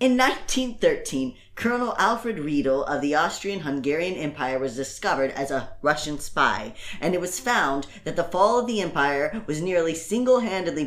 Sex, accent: female, American